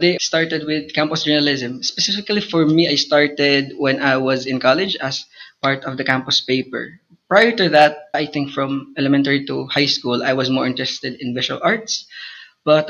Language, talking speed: English, 175 wpm